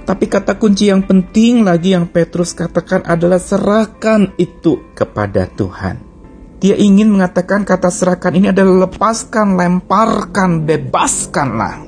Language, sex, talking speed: Indonesian, male, 120 wpm